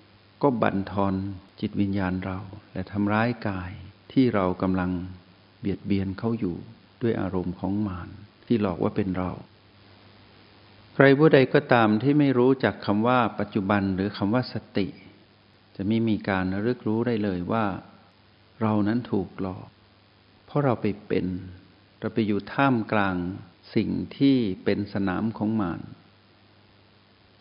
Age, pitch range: 60-79, 95-110 Hz